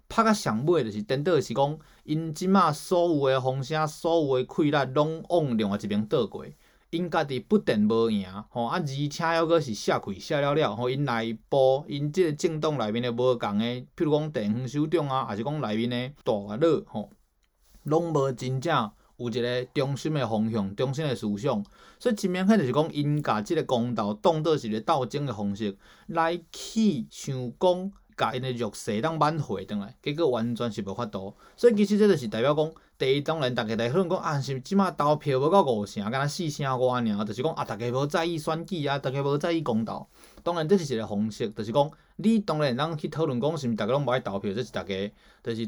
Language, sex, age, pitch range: Chinese, male, 20-39, 120-165 Hz